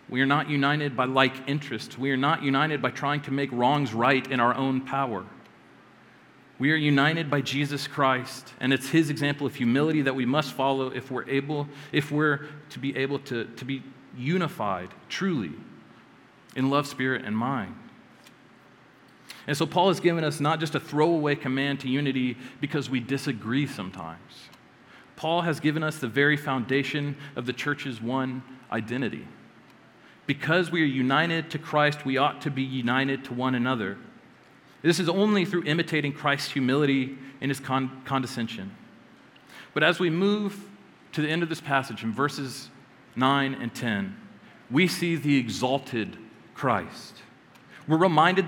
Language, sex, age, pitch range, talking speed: English, male, 40-59, 130-155 Hz, 160 wpm